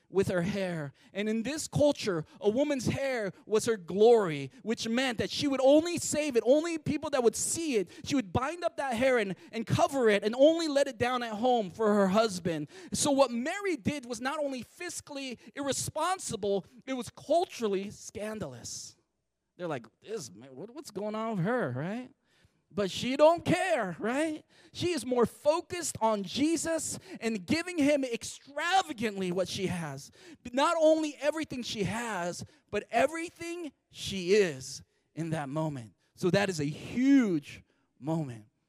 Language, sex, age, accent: English, male, 30-49, American